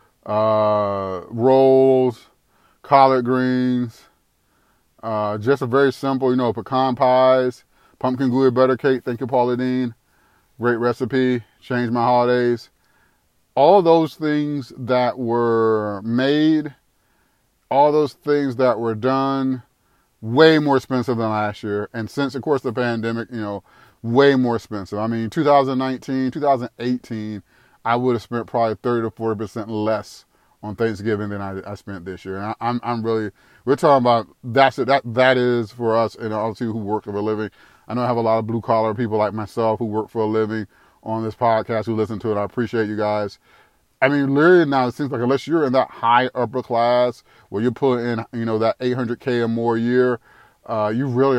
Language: English